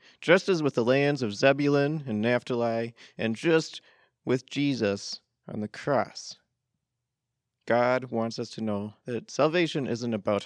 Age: 30-49